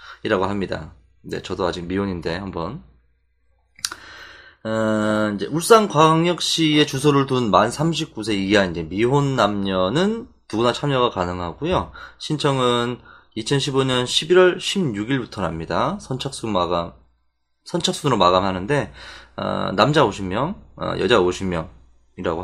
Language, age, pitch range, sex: Korean, 20-39, 95-160 Hz, male